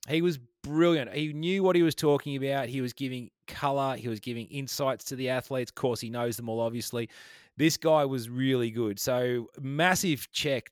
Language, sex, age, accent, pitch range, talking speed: English, male, 30-49, Australian, 110-135 Hz, 200 wpm